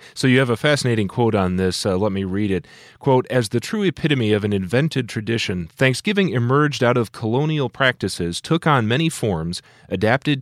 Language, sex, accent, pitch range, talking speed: English, male, American, 105-135 Hz, 190 wpm